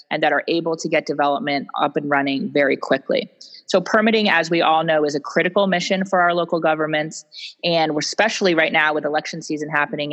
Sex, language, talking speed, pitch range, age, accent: female, English, 205 wpm, 145-170 Hz, 30-49, American